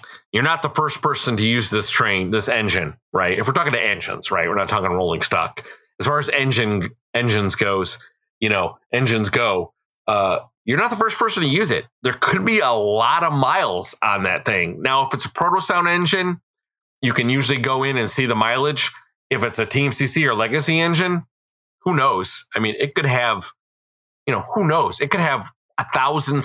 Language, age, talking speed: English, 30-49, 205 wpm